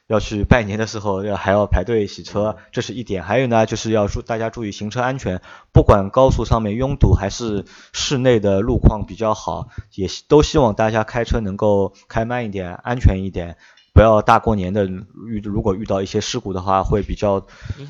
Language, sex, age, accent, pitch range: Chinese, male, 20-39, native, 100-120 Hz